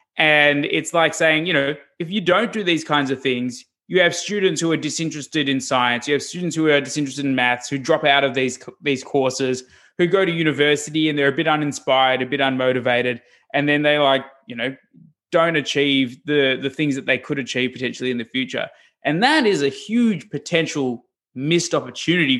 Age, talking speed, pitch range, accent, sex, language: 20-39, 205 wpm, 130-165 Hz, Australian, male, English